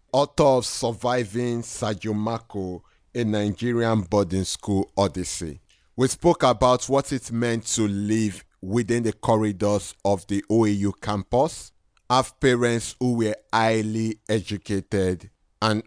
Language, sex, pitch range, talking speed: English, male, 100-125 Hz, 120 wpm